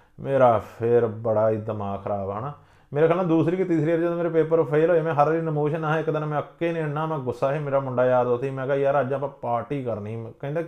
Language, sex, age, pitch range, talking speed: Punjabi, male, 30-49, 120-150 Hz, 235 wpm